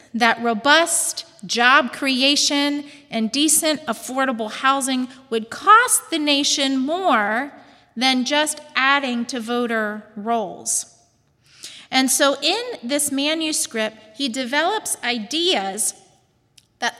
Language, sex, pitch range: English, female, 220-295 Hz